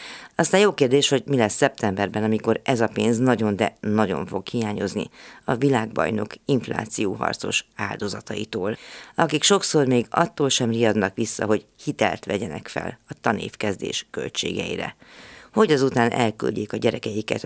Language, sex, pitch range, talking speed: Hungarian, female, 110-140 Hz, 135 wpm